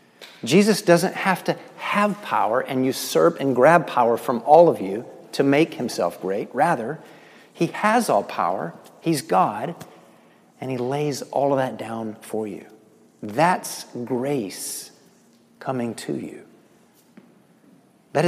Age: 50-69